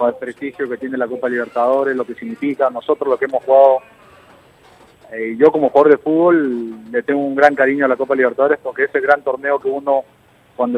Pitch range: 125-155 Hz